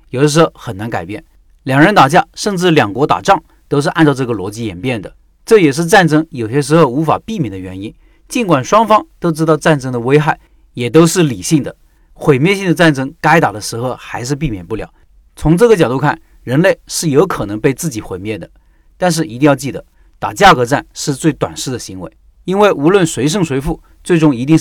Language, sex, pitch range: Chinese, male, 125-165 Hz